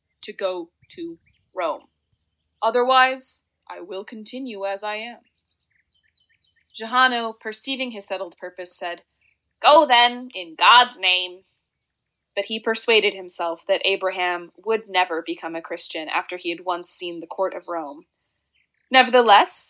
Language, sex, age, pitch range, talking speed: English, female, 20-39, 185-260 Hz, 130 wpm